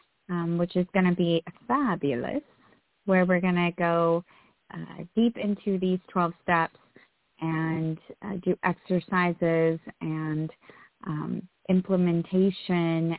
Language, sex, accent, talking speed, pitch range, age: English, female, American, 110 wpm, 170-195 Hz, 30-49